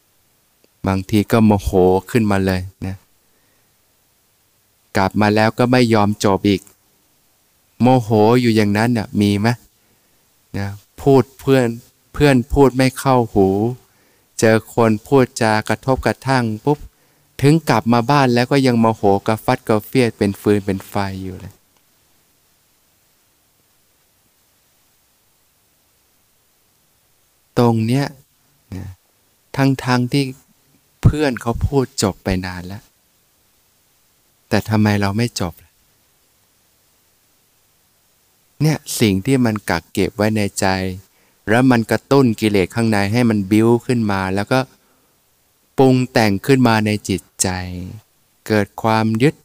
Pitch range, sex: 100-125 Hz, male